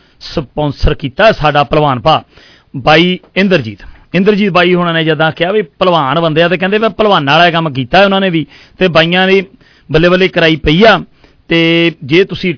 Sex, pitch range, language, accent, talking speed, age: male, 145-180 Hz, English, Indian, 170 wpm, 40-59